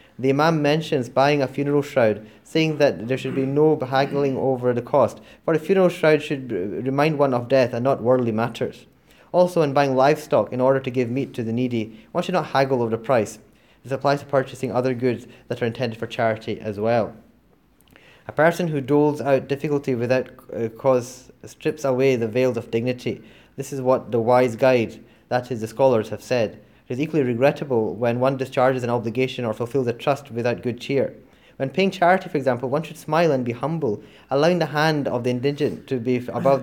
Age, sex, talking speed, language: 20-39, male, 205 wpm, English